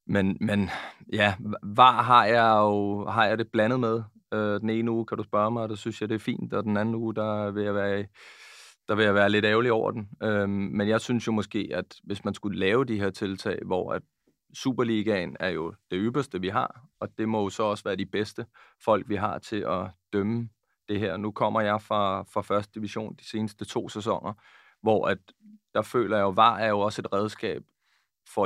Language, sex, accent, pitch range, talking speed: Danish, male, native, 100-110 Hz, 225 wpm